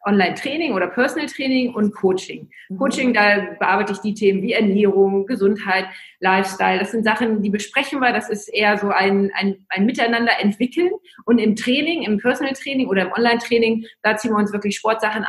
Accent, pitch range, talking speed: German, 195-235 Hz, 180 wpm